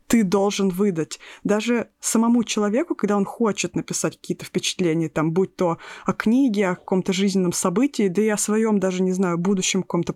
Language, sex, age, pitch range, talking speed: Russian, female, 20-39, 190-220 Hz, 170 wpm